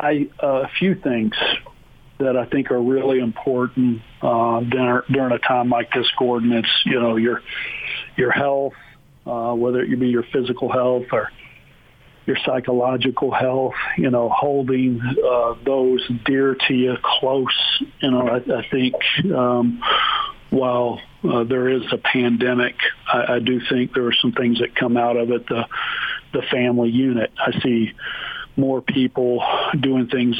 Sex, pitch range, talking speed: male, 120-135 Hz, 155 wpm